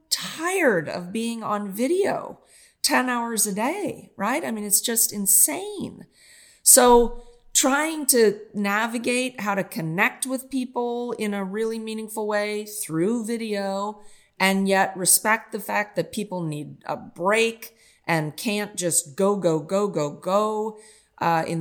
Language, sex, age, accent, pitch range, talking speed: English, female, 40-59, American, 180-240 Hz, 140 wpm